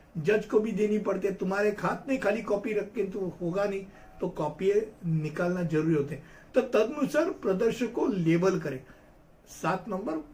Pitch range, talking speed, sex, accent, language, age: 170-215 Hz, 170 wpm, male, native, Hindi, 50-69